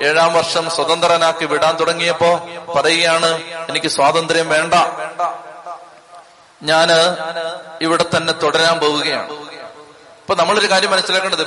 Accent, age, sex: native, 30-49, male